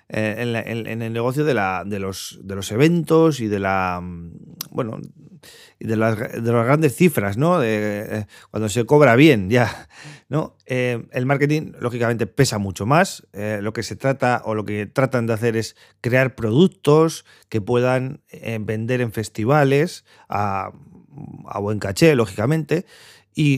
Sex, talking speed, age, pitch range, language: male, 170 wpm, 30-49, 110-135 Hz, Spanish